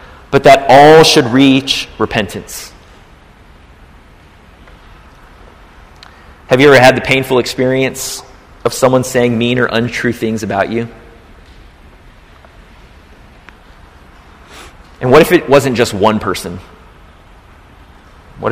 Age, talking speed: 30-49, 100 wpm